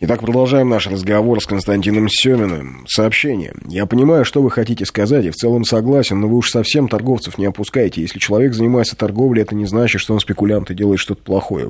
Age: 20-39